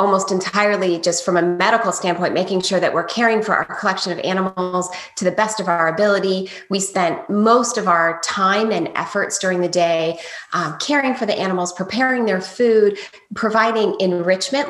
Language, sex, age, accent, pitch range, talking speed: English, female, 20-39, American, 175-215 Hz, 180 wpm